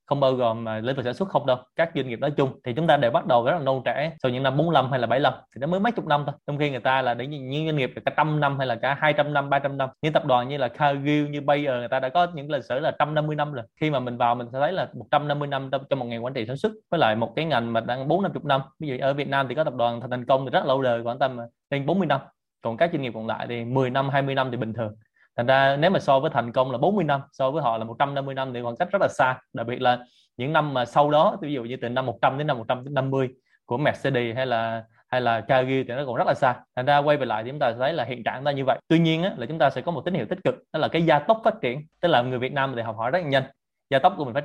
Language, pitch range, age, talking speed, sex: Vietnamese, 125-150 Hz, 20-39, 340 wpm, male